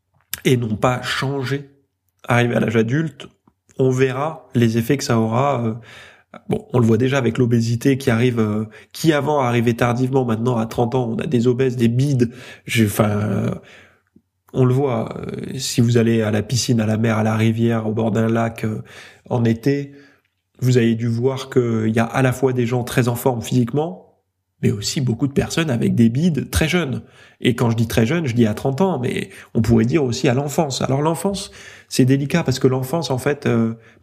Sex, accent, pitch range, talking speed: male, French, 110-135 Hz, 205 wpm